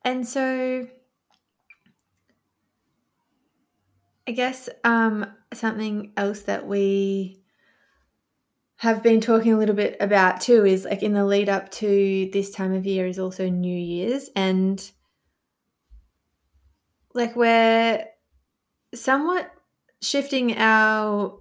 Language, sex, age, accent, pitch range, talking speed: English, female, 20-39, Australian, 190-225 Hz, 105 wpm